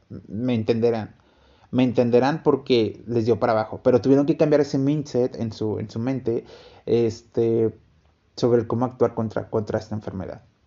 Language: Spanish